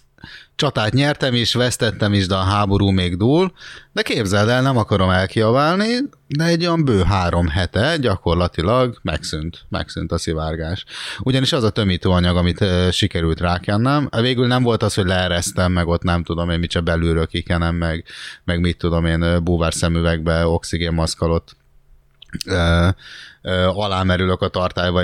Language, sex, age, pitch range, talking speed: Hungarian, male, 30-49, 85-105 Hz, 145 wpm